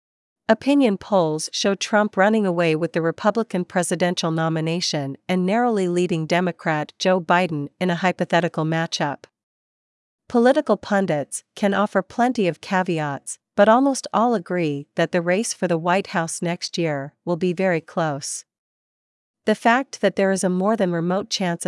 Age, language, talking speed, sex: 50-69, Vietnamese, 150 wpm, female